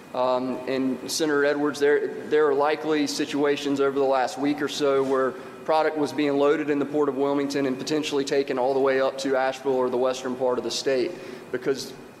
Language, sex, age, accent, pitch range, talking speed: English, male, 30-49, American, 130-150 Hz, 205 wpm